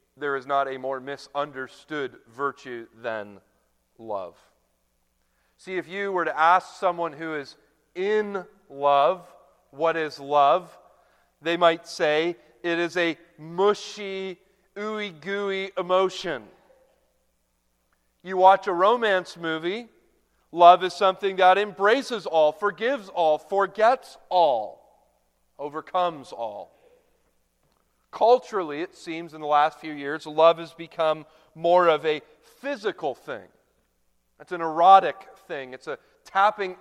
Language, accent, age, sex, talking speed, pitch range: English, American, 40-59, male, 115 wpm, 140-195 Hz